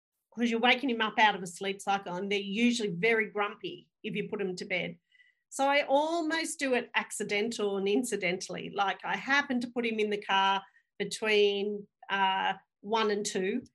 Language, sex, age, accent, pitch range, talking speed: English, female, 40-59, Australian, 200-245 Hz, 190 wpm